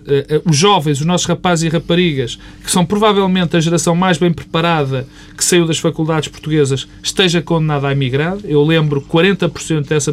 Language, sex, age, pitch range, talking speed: Portuguese, male, 40-59, 150-220 Hz, 170 wpm